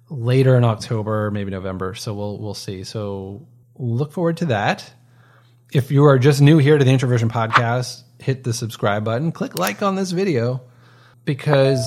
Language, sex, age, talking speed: English, male, 30-49, 170 wpm